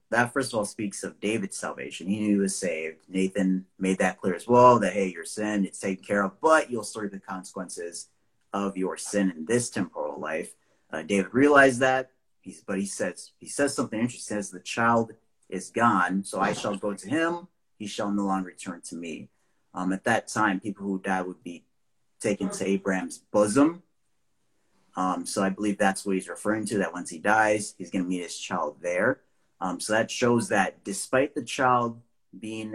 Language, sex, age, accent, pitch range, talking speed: English, male, 30-49, American, 95-115 Hz, 205 wpm